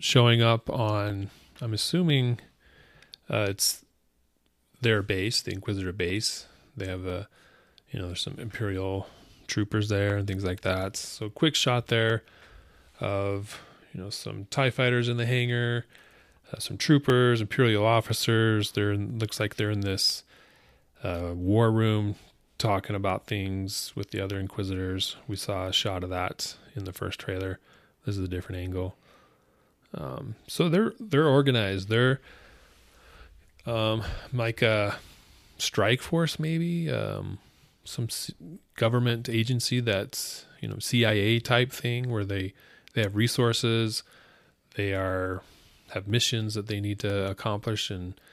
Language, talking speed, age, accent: English, 140 wpm, 30-49, American